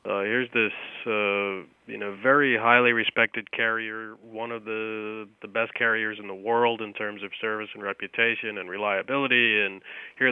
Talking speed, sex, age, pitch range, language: 170 wpm, male, 30-49, 100-120 Hz, English